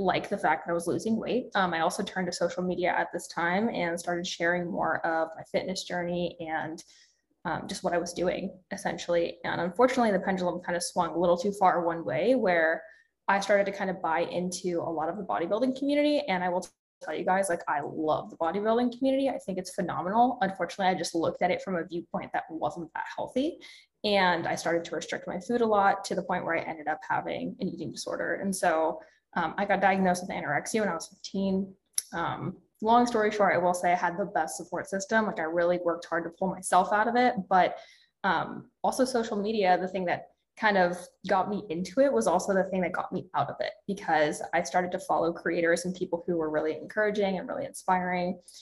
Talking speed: 230 wpm